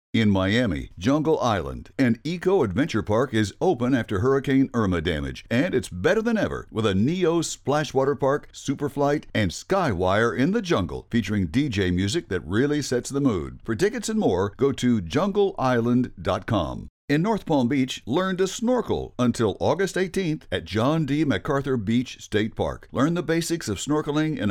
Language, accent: English, American